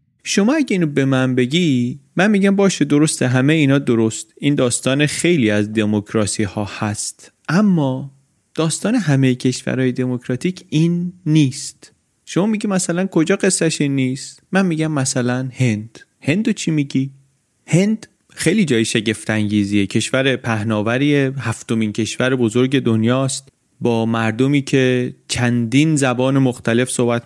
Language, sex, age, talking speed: Persian, male, 30-49, 130 wpm